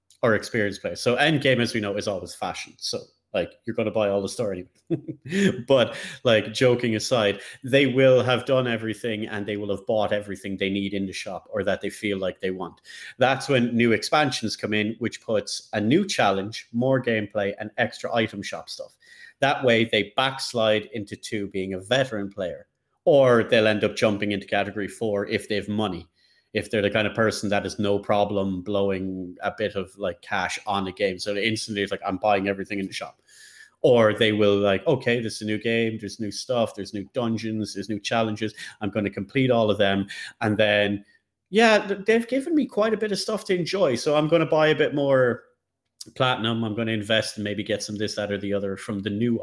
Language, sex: English, male